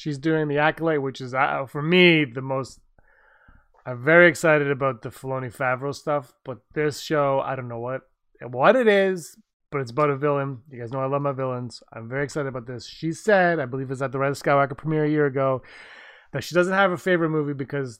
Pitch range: 130-170 Hz